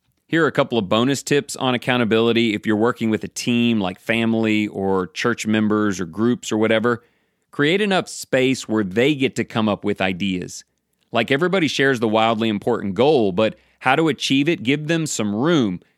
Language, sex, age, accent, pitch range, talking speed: English, male, 30-49, American, 105-130 Hz, 190 wpm